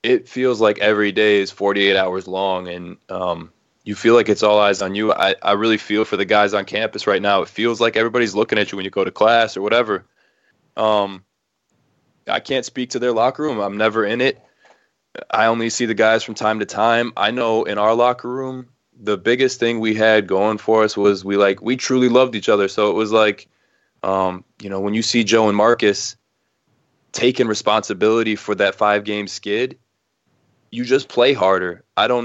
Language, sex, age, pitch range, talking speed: English, male, 20-39, 100-115 Hz, 210 wpm